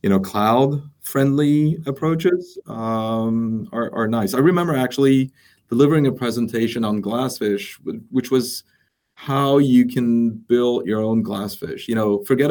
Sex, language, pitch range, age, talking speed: male, English, 105-135 Hz, 30-49, 140 wpm